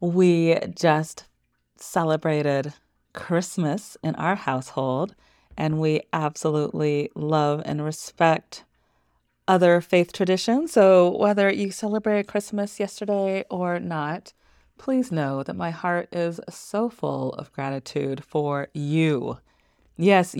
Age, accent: 30-49, American